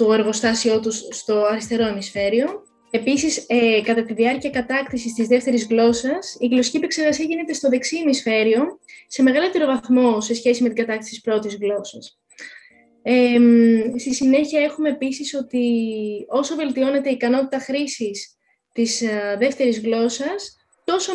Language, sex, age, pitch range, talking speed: Greek, female, 20-39, 230-285 Hz, 135 wpm